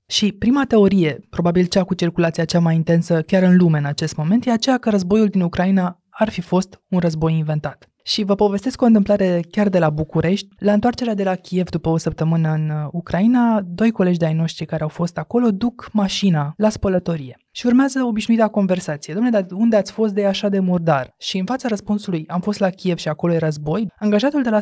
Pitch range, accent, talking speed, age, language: 165-215 Hz, native, 215 wpm, 20-39, Romanian